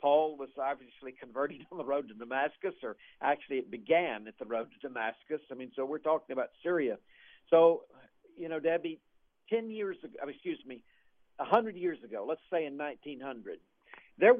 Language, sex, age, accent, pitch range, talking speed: English, male, 50-69, American, 135-190 Hz, 175 wpm